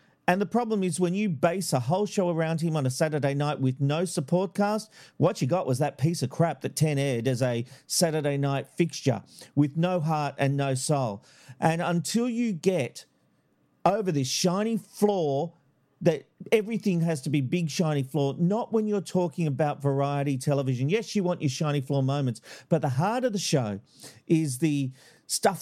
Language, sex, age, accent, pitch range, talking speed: English, male, 40-59, Australian, 140-185 Hz, 190 wpm